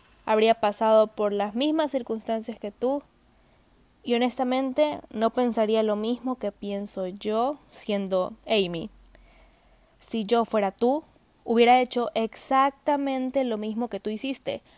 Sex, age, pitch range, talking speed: female, 10-29, 210-255 Hz, 125 wpm